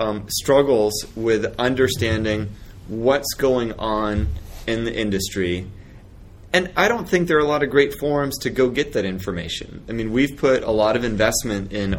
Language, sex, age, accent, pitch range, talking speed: English, male, 30-49, American, 105-130 Hz, 175 wpm